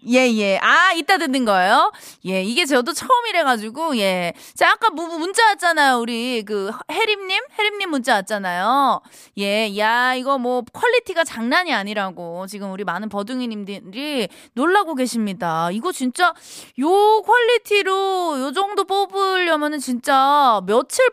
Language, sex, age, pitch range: Korean, female, 20-39, 225-360 Hz